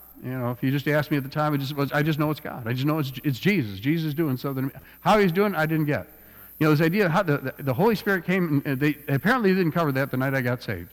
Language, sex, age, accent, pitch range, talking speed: English, male, 50-69, American, 115-160 Hz, 320 wpm